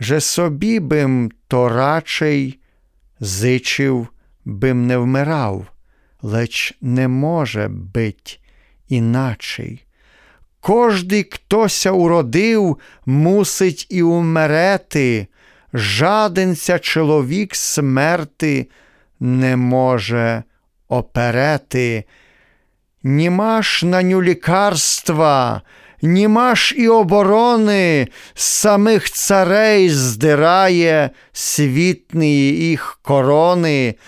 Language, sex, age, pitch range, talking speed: Ukrainian, male, 40-59, 130-180 Hz, 70 wpm